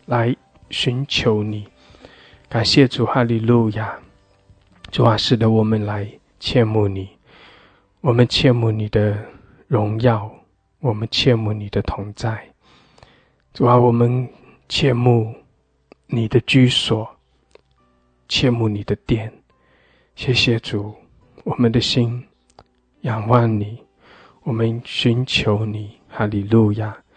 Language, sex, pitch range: English, male, 105-120 Hz